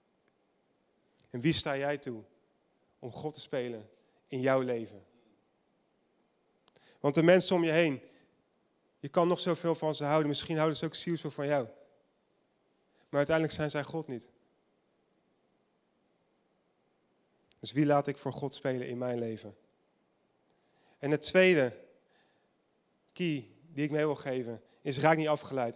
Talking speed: 140 wpm